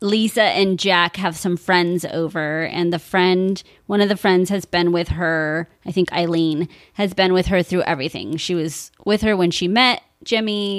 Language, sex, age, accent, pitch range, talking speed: English, female, 20-39, American, 165-195 Hz, 195 wpm